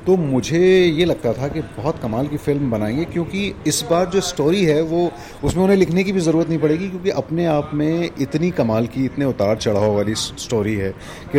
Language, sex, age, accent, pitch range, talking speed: Hindi, male, 30-49, native, 110-160 Hz, 210 wpm